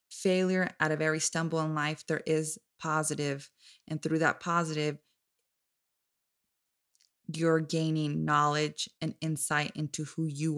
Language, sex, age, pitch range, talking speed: English, female, 20-39, 150-170 Hz, 125 wpm